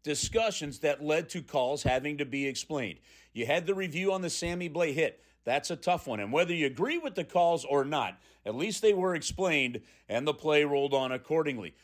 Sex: male